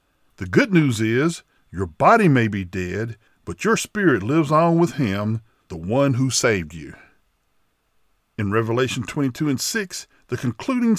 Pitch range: 110-165 Hz